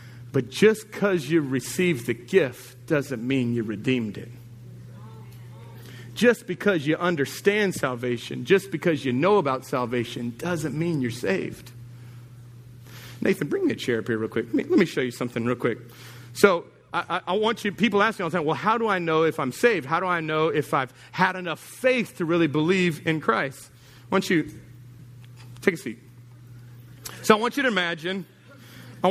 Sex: male